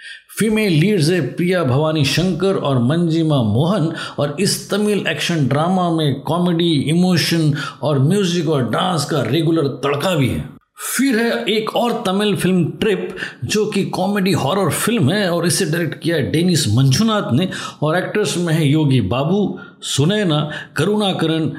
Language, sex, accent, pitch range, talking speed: Hindi, male, native, 150-190 Hz, 155 wpm